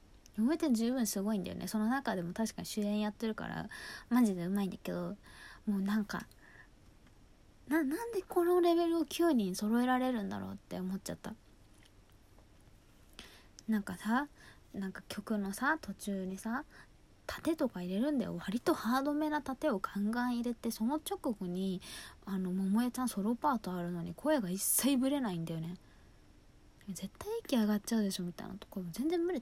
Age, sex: 20-39, female